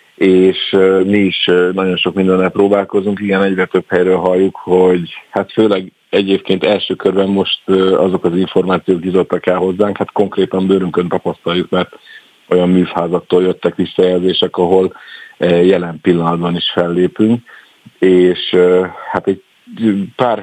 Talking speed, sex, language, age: 125 wpm, male, Hungarian, 50-69